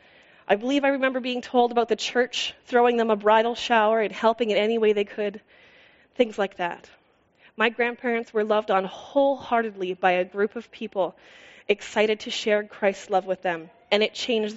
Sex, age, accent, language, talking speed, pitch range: female, 20-39, American, English, 185 wpm, 190-235 Hz